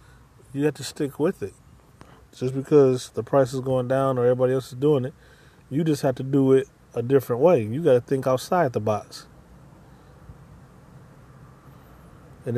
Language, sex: English, male